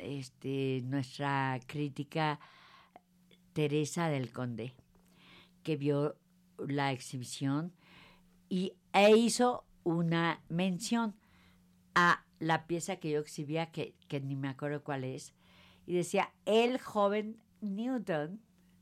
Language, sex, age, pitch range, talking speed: Spanish, female, 50-69, 150-200 Hz, 105 wpm